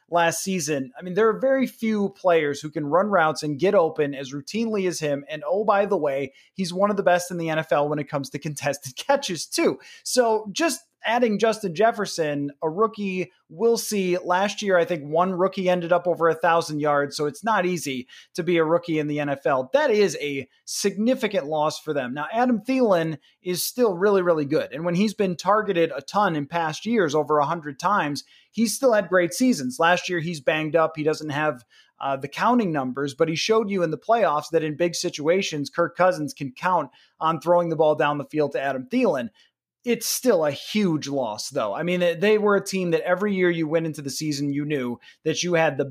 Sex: male